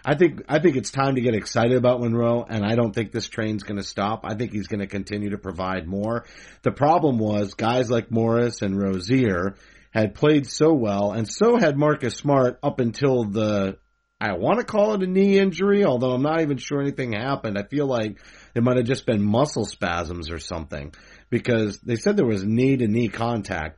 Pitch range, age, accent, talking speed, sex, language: 105-135 Hz, 40-59, American, 210 wpm, male, English